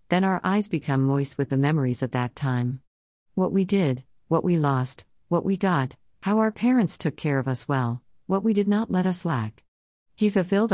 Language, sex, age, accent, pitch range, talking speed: Hindi, female, 50-69, American, 130-185 Hz, 205 wpm